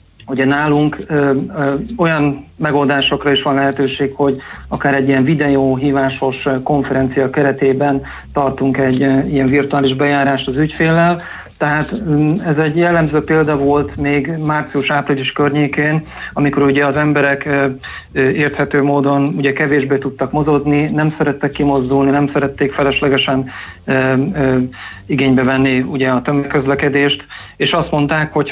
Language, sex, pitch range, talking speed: Hungarian, male, 135-150 Hz, 115 wpm